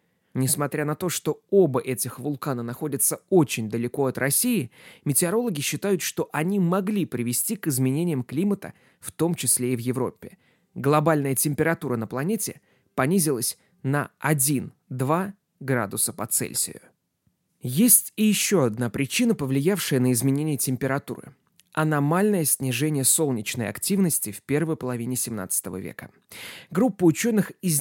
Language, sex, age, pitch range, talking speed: Russian, male, 20-39, 130-180 Hz, 125 wpm